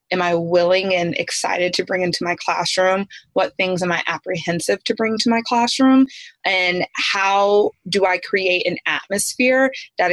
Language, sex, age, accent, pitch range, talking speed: English, female, 20-39, American, 175-205 Hz, 165 wpm